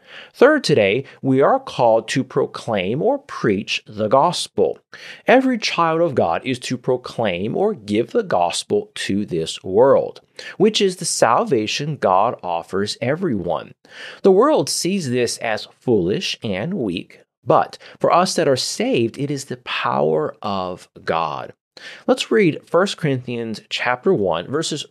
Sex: male